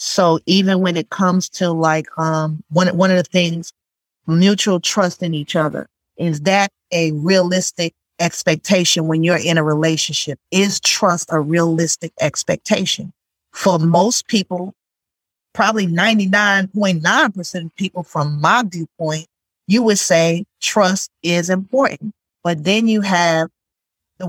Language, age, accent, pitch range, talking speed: English, 40-59, American, 170-205 Hz, 135 wpm